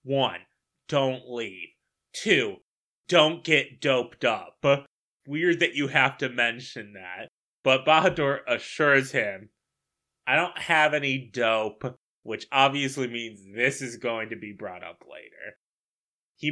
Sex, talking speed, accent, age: male, 130 wpm, American, 20-39